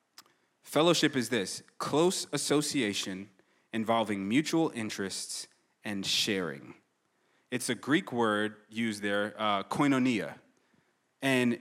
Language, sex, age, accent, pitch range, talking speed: English, male, 30-49, American, 115-150 Hz, 100 wpm